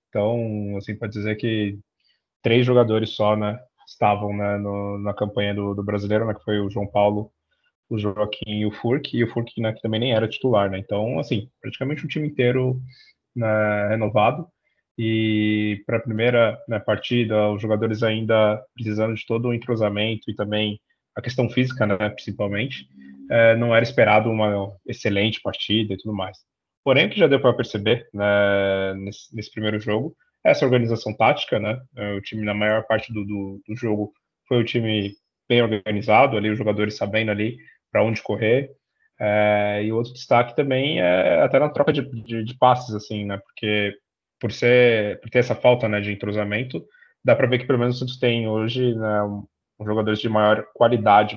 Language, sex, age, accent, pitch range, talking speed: Portuguese, male, 20-39, Brazilian, 105-120 Hz, 185 wpm